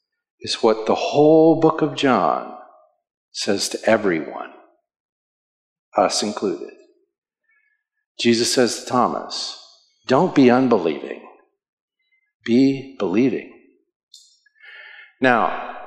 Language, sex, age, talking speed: English, male, 50-69, 85 wpm